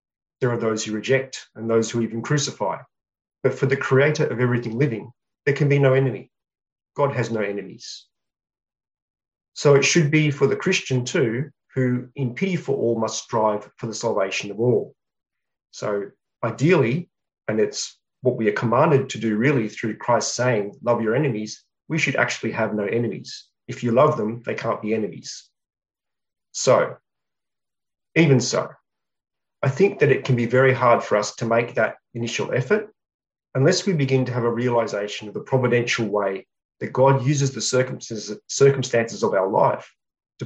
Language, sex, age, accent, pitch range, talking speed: English, male, 30-49, Australian, 115-140 Hz, 170 wpm